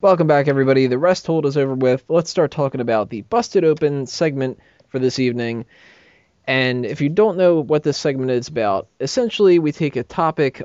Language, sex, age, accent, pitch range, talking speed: English, male, 20-39, American, 120-150 Hz, 195 wpm